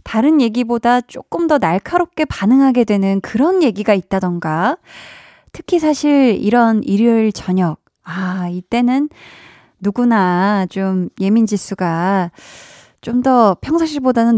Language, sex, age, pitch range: Korean, female, 20-39, 195-270 Hz